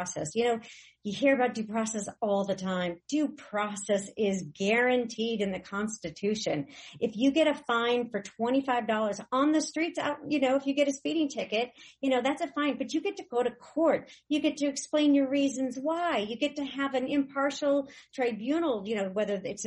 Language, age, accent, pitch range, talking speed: English, 50-69, American, 210-275 Hz, 205 wpm